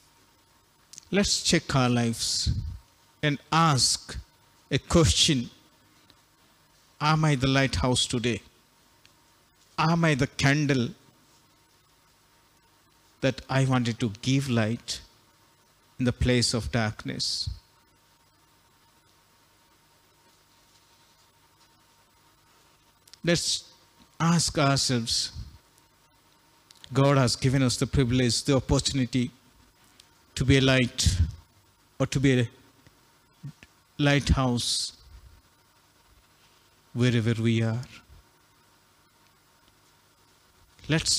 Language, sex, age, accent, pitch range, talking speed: Telugu, male, 50-69, native, 115-140 Hz, 75 wpm